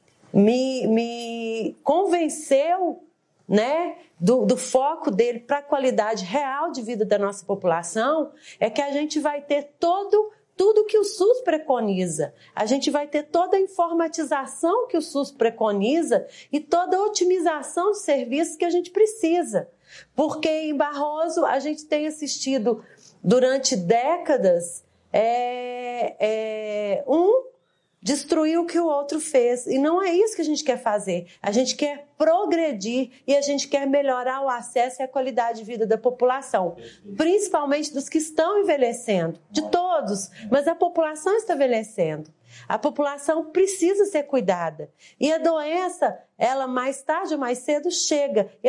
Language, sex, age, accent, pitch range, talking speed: Portuguese, female, 40-59, Brazilian, 235-330 Hz, 150 wpm